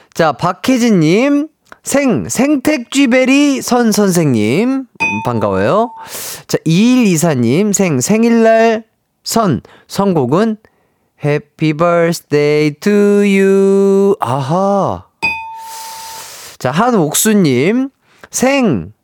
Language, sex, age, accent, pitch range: Korean, male, 30-49, native, 140-230 Hz